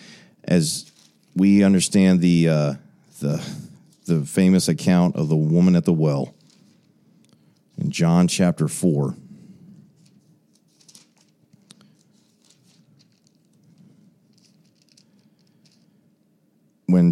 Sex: male